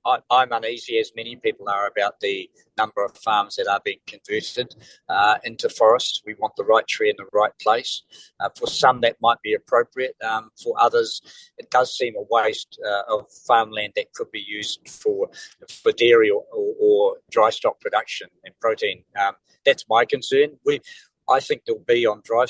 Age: 50-69